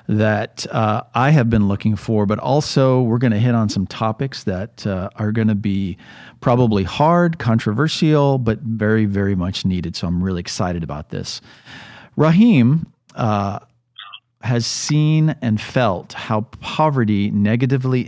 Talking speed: 145 wpm